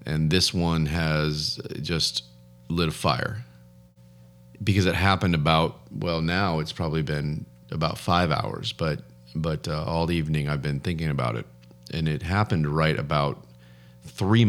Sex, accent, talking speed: male, American, 155 wpm